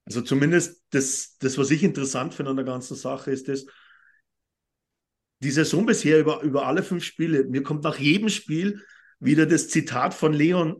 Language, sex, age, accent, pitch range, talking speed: German, male, 50-69, German, 140-190 Hz, 180 wpm